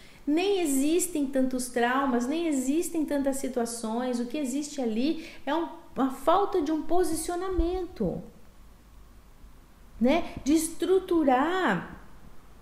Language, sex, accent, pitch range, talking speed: Portuguese, female, Brazilian, 235-320 Hz, 100 wpm